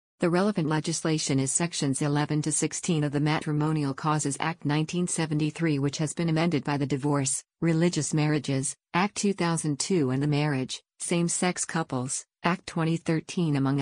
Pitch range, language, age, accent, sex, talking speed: 145-165 Hz, English, 50-69, American, female, 145 wpm